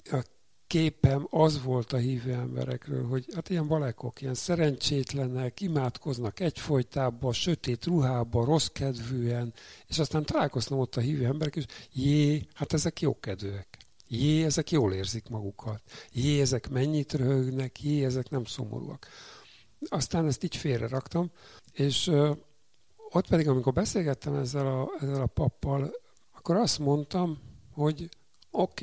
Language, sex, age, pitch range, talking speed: Hungarian, male, 60-79, 120-145 Hz, 130 wpm